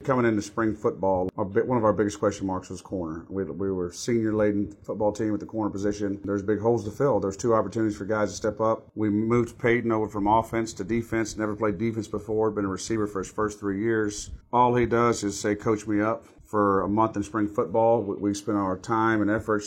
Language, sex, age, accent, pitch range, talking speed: English, male, 40-59, American, 100-110 Hz, 230 wpm